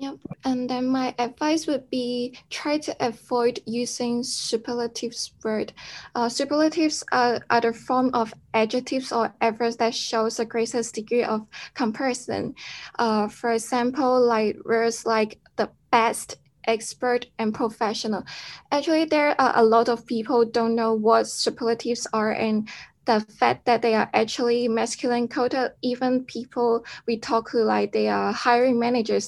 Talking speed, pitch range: 145 wpm, 225-250 Hz